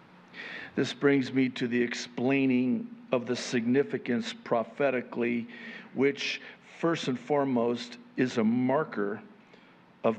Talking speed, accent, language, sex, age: 105 wpm, American, English, male, 50-69